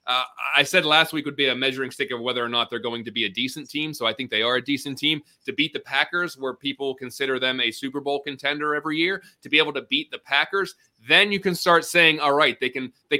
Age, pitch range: 20-39, 125-150 Hz